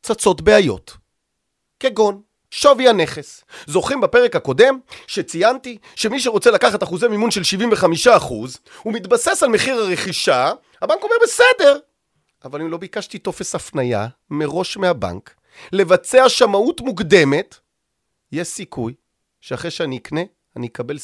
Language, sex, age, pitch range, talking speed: Hebrew, male, 30-49, 155-245 Hz, 115 wpm